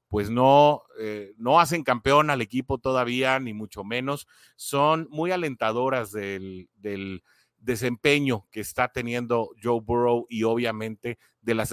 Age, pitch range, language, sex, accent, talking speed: 30-49, 105-125 Hz, Spanish, male, Mexican, 135 wpm